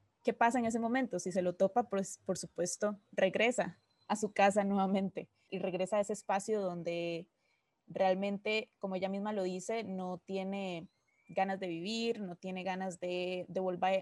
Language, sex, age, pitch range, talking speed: Spanish, female, 20-39, 190-235 Hz, 170 wpm